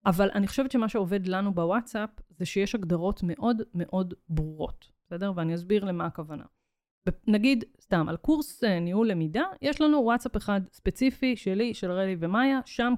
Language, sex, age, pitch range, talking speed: Hebrew, female, 30-49, 175-230 Hz, 155 wpm